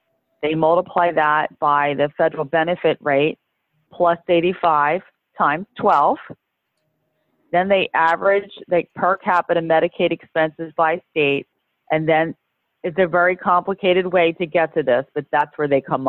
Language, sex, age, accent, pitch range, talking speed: English, female, 40-59, American, 145-180 Hz, 140 wpm